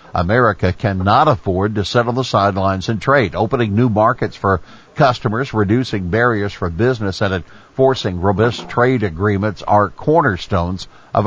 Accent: American